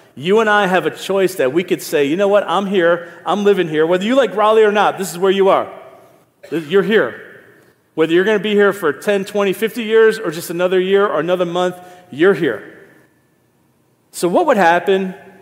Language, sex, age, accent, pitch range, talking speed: English, male, 40-59, American, 170-205 Hz, 215 wpm